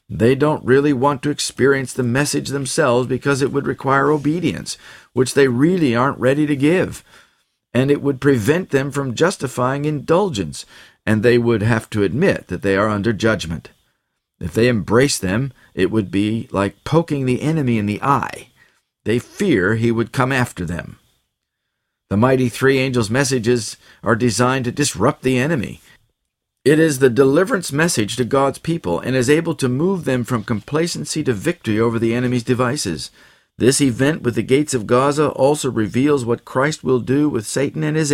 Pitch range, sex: 115-150 Hz, male